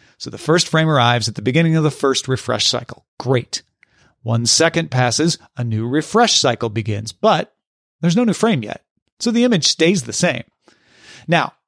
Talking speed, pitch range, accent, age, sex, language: 180 wpm, 130-190 Hz, American, 40-59, male, English